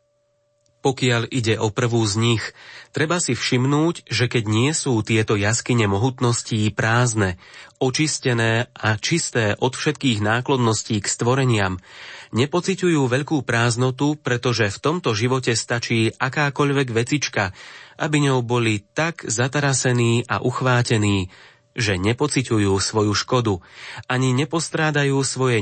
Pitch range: 110-130 Hz